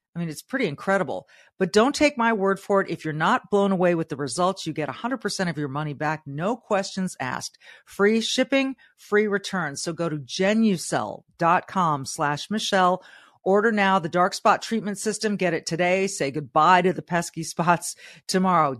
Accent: American